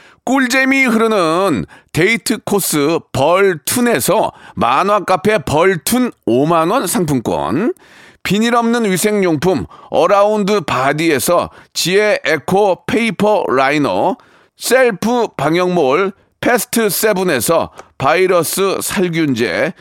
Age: 40-59